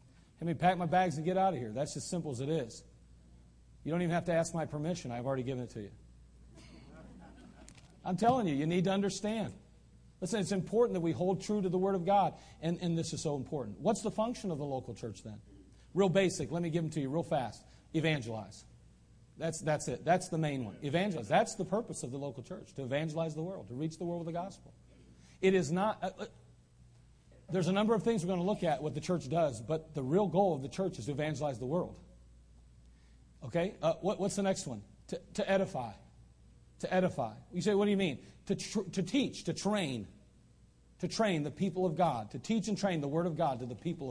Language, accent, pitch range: English, American, 140-195 Hz